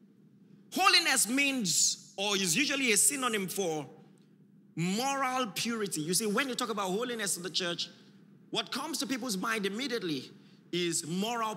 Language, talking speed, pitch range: English, 145 wpm, 180-240 Hz